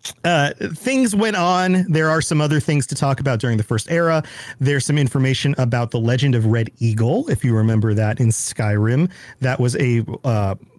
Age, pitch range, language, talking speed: 40-59, 115-145 Hz, English, 195 wpm